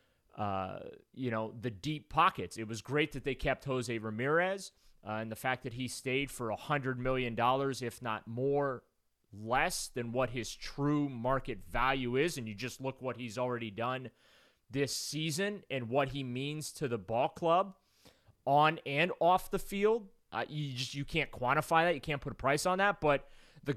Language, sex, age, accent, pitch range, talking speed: English, male, 30-49, American, 125-160 Hz, 190 wpm